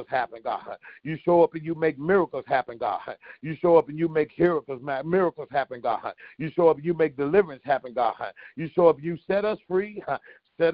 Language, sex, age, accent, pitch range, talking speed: English, male, 40-59, American, 155-175 Hz, 210 wpm